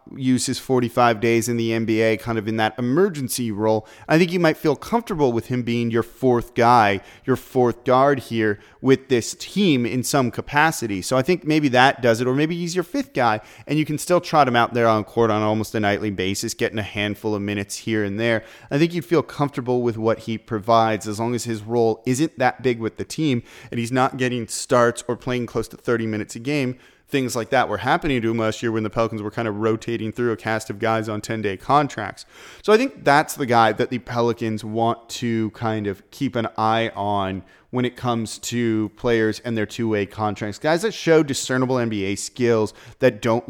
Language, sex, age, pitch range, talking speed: English, male, 30-49, 110-125 Hz, 225 wpm